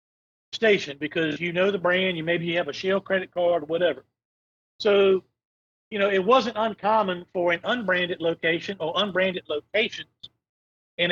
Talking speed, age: 160 wpm, 50-69